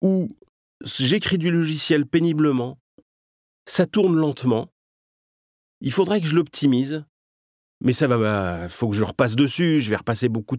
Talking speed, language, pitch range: 155 wpm, French, 120-180 Hz